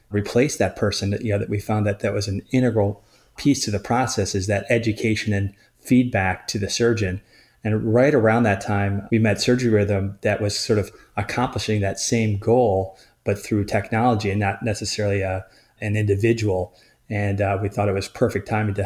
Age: 30-49